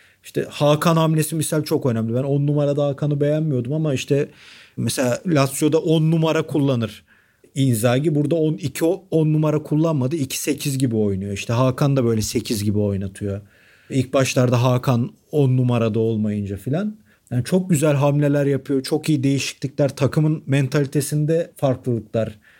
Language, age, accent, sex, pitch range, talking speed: Turkish, 40-59, native, male, 125-150 Hz, 140 wpm